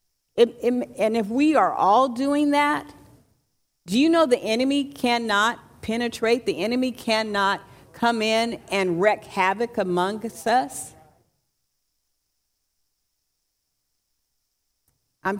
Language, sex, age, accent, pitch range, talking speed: English, female, 50-69, American, 180-230 Hz, 100 wpm